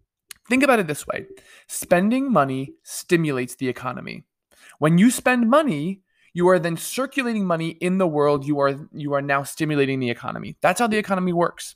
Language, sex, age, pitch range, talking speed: English, male, 20-39, 145-210 Hz, 175 wpm